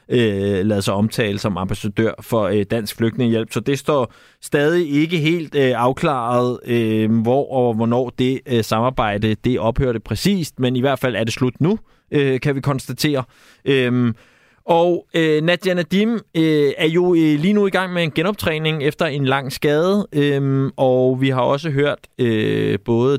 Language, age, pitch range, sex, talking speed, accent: Danish, 20-39, 115-155 Hz, male, 145 wpm, native